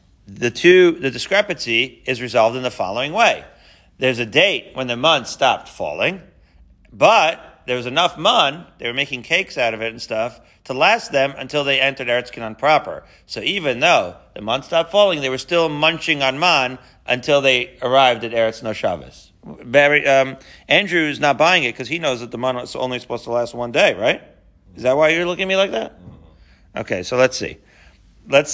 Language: English